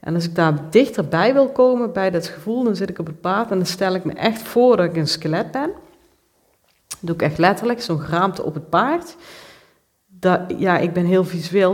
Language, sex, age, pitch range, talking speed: Dutch, female, 40-59, 165-205 Hz, 225 wpm